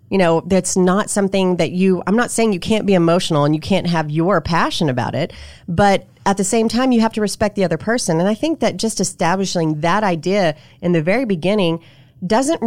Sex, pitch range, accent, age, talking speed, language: female, 170-215 Hz, American, 30-49, 225 wpm, English